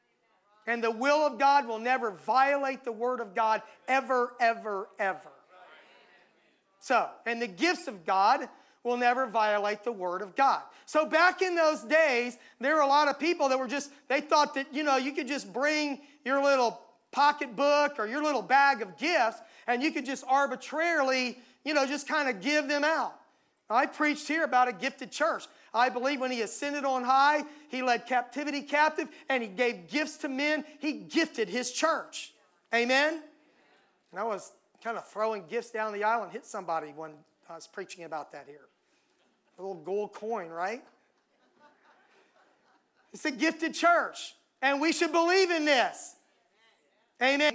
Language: English